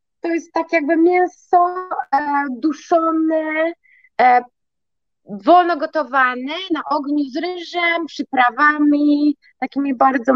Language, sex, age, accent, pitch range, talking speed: Polish, female, 20-39, native, 235-310 Hz, 85 wpm